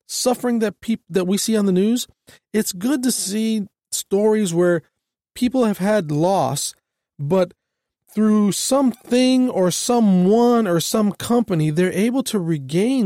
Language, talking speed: English, 140 wpm